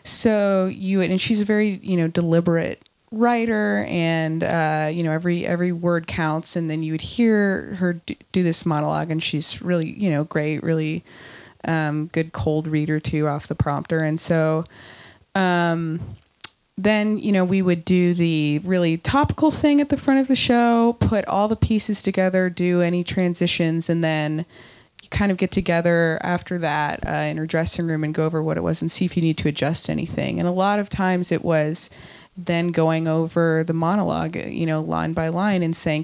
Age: 20-39